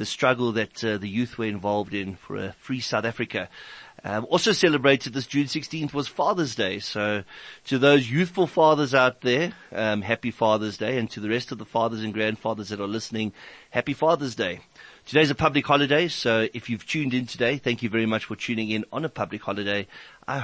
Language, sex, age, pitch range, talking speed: English, male, 30-49, 110-150 Hz, 210 wpm